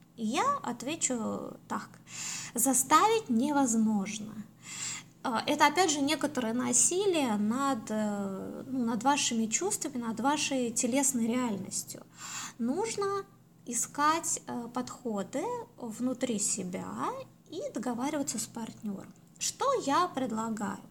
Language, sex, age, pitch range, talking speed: Russian, female, 20-39, 225-295 Hz, 90 wpm